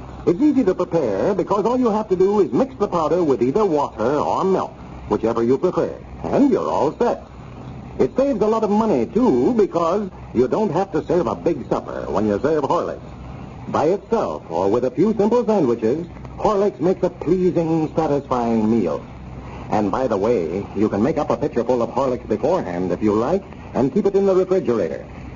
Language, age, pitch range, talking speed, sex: English, 60-79, 115-185 Hz, 195 wpm, male